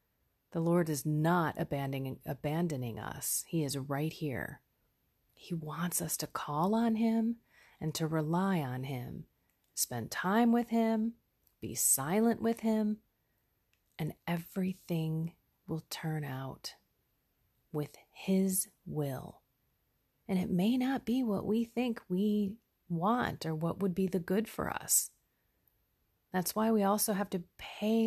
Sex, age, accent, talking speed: female, 30-49, American, 135 wpm